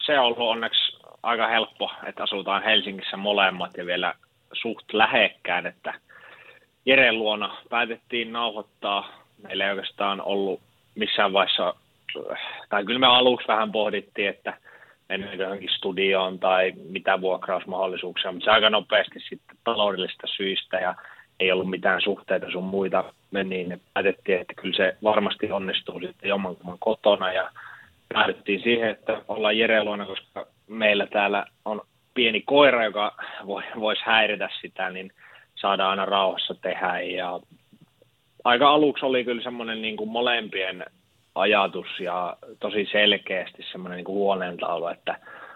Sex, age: male, 30-49